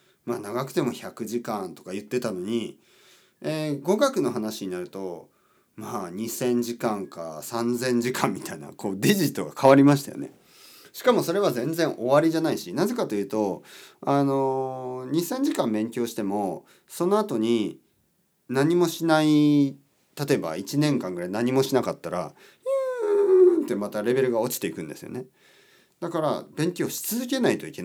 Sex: male